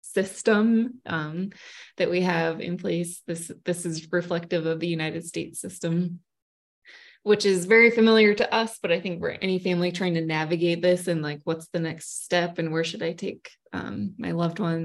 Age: 20-39